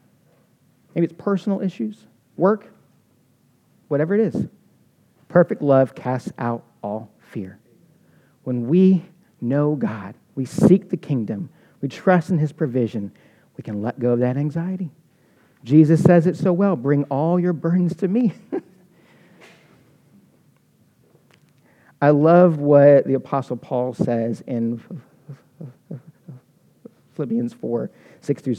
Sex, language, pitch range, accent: male, English, 115-155 Hz, American